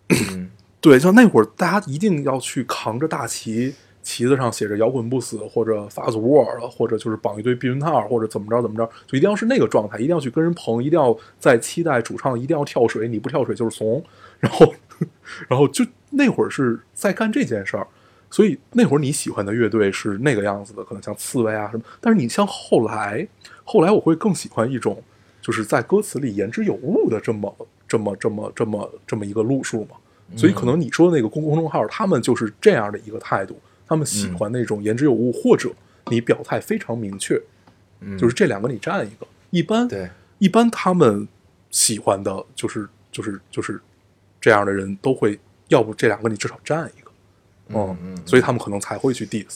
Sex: male